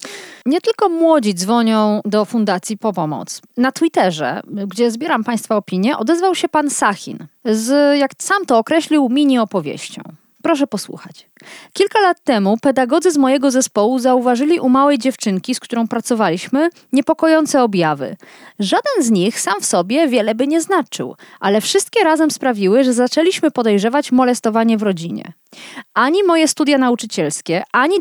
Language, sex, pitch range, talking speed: Polish, female, 215-300 Hz, 145 wpm